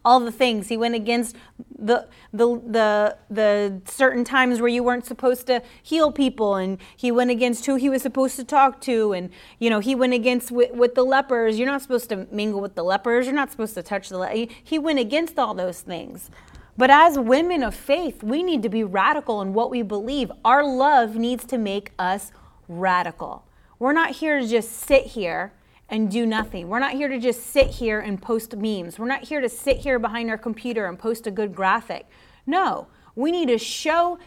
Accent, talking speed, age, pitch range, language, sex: American, 215 wpm, 30-49, 210-260 Hz, English, female